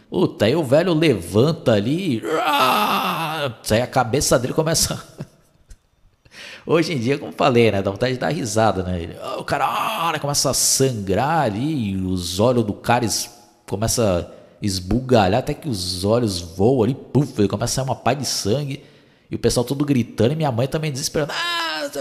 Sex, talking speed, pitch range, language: male, 175 wpm, 110-150 Hz, Portuguese